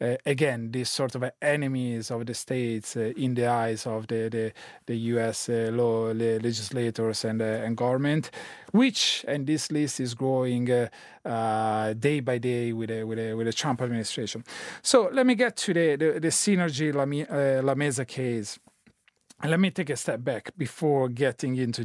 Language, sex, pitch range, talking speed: English, male, 120-155 Hz, 185 wpm